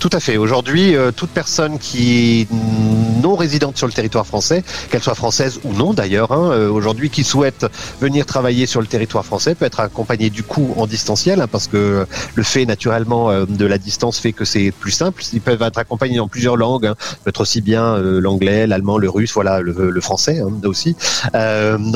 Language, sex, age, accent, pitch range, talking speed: French, male, 30-49, French, 105-125 Hz, 215 wpm